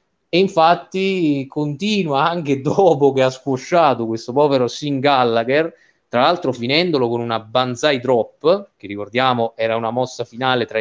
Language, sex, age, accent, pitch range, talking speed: Italian, male, 30-49, native, 125-155 Hz, 145 wpm